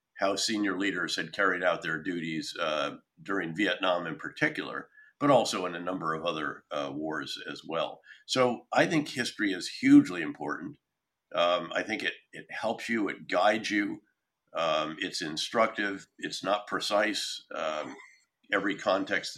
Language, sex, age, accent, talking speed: English, male, 50-69, American, 155 wpm